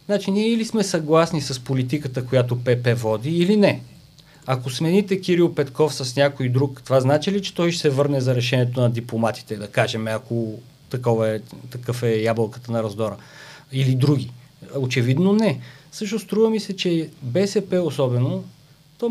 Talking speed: 165 wpm